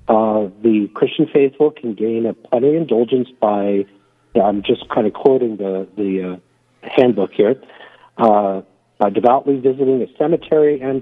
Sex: male